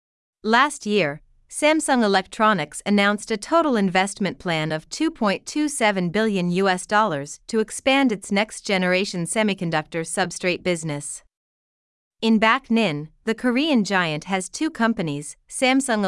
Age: 30-49